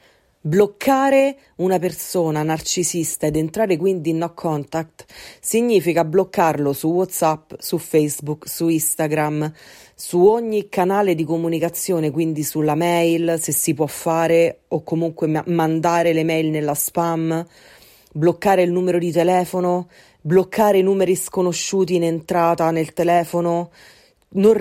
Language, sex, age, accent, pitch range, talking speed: Italian, female, 30-49, native, 160-190 Hz, 125 wpm